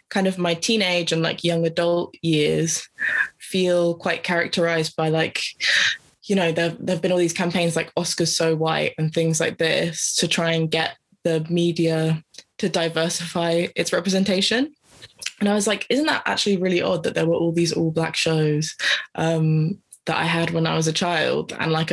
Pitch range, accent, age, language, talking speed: 160-180 Hz, British, 20-39, English, 185 wpm